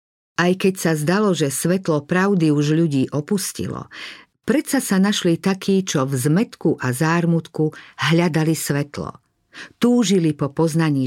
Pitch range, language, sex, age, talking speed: 145-180 Hz, Slovak, female, 50-69, 130 wpm